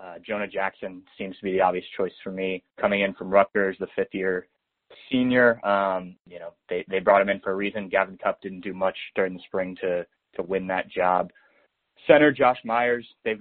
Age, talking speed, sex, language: 20-39, 205 wpm, male, English